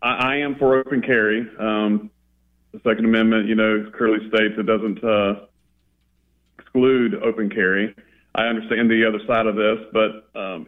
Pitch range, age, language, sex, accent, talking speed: 100-115 Hz, 40-59, English, male, American, 155 wpm